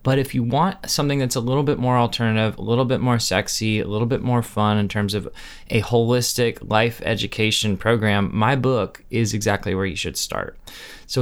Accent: American